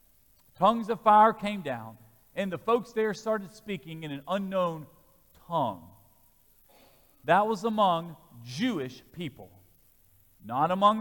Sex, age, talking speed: male, 40-59, 120 wpm